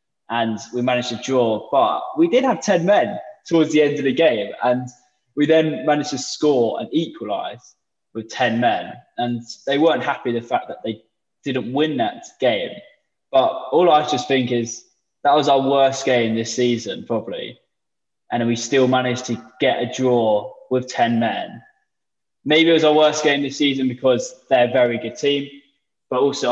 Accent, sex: British, male